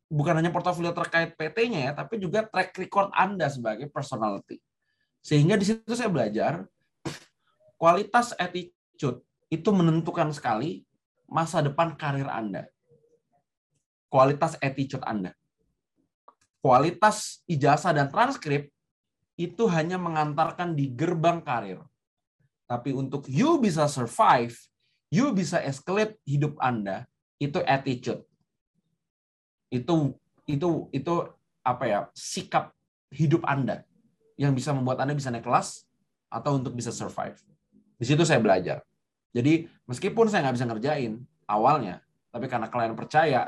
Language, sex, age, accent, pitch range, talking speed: English, male, 20-39, Indonesian, 125-170 Hz, 120 wpm